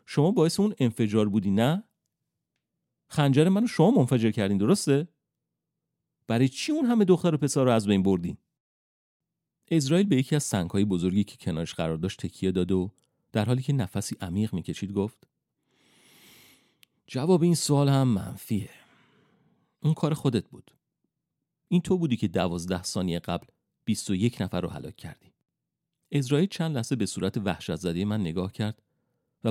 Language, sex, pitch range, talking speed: Persian, male, 100-155 Hz, 160 wpm